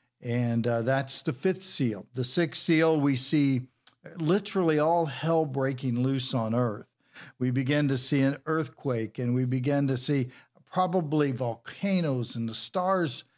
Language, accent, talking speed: English, American, 155 wpm